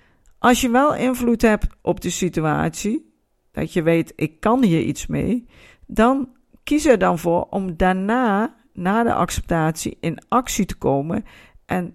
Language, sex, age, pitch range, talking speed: Dutch, female, 50-69, 175-240 Hz, 155 wpm